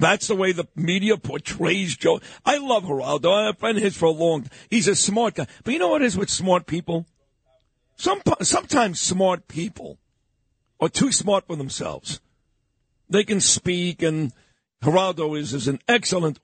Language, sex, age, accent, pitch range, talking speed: English, male, 50-69, American, 170-235 Hz, 175 wpm